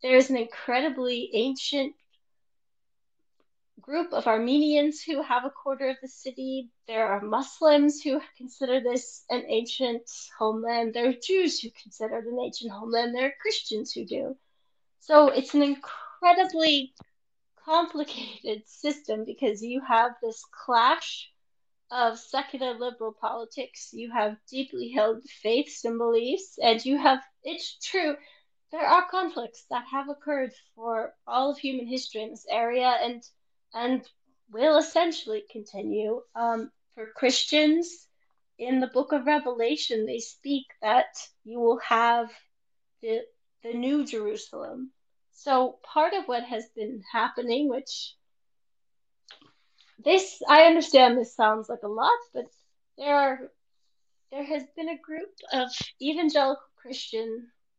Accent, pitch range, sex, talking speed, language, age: American, 235-295 Hz, female, 135 wpm, English, 30-49